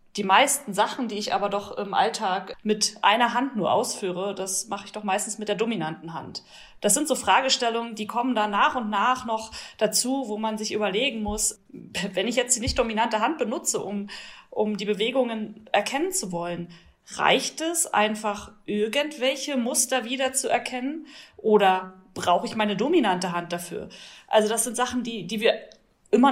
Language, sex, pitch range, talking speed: German, female, 190-230 Hz, 175 wpm